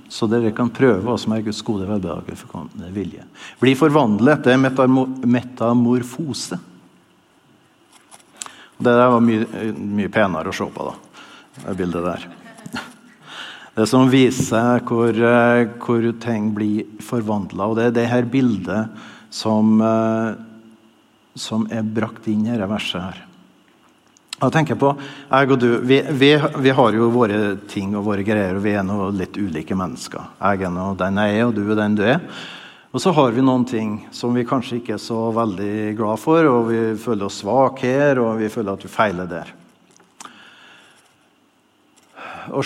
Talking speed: 165 wpm